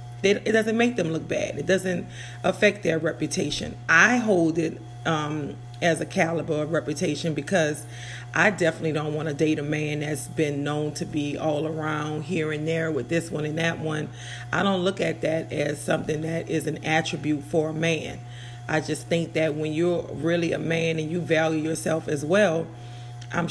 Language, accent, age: English, American, 40-59